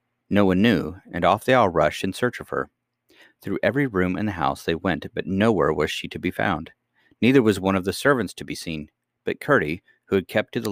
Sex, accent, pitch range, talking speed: male, American, 90-105 Hz, 240 wpm